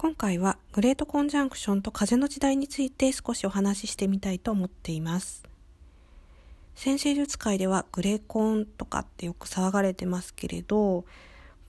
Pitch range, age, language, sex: 175-250 Hz, 40-59, Japanese, female